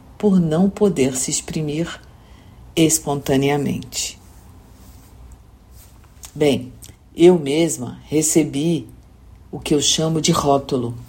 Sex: female